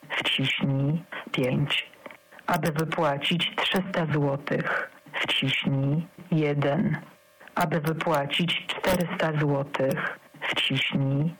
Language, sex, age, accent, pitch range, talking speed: Polish, female, 50-69, native, 150-190 Hz, 70 wpm